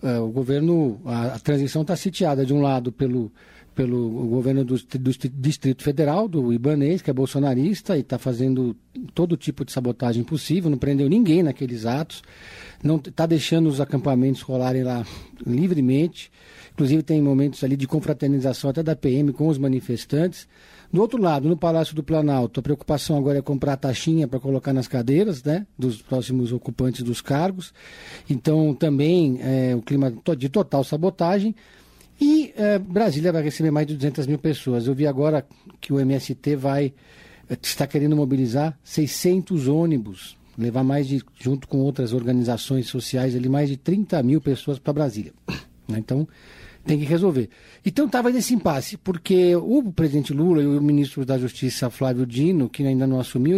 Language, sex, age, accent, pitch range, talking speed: Portuguese, male, 50-69, Brazilian, 130-165 Hz, 165 wpm